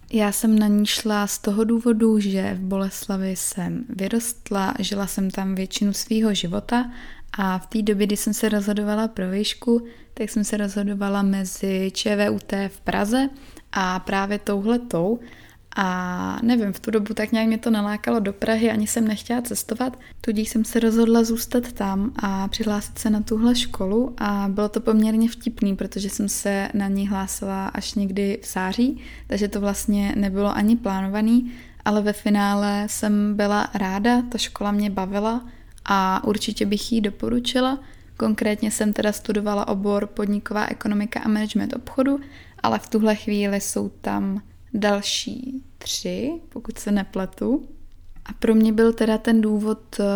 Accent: native